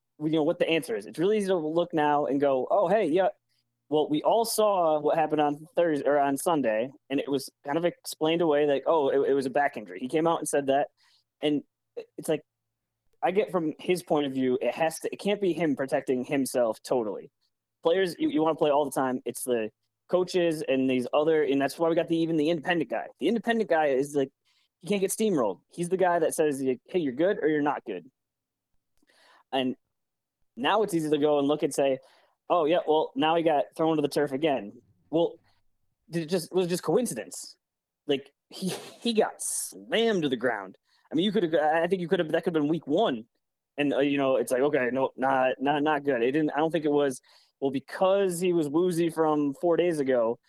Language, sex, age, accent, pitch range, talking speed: English, male, 20-39, American, 135-165 Hz, 230 wpm